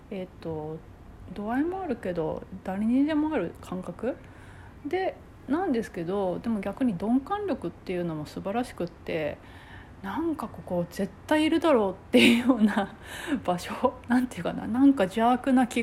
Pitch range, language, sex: 185-290 Hz, Japanese, female